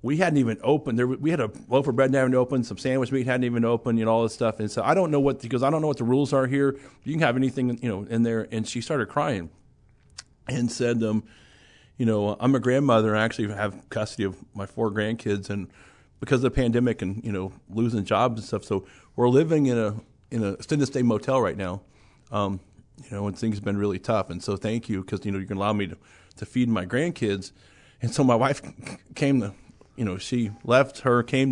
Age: 40-59